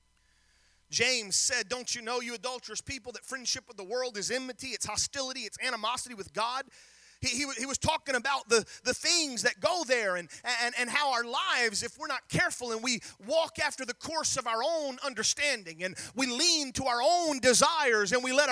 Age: 30-49